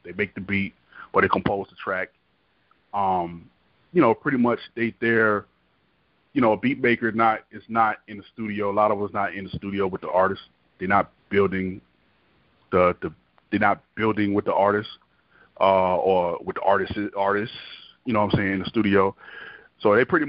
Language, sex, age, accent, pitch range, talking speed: English, male, 30-49, American, 100-125 Hz, 195 wpm